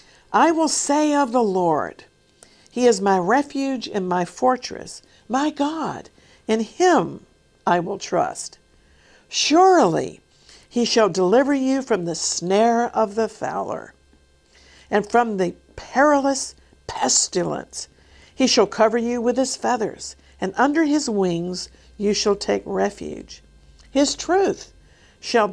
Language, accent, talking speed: English, American, 125 wpm